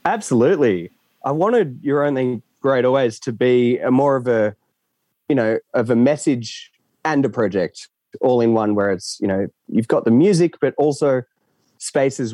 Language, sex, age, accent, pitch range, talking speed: English, male, 20-39, Australian, 110-140 Hz, 170 wpm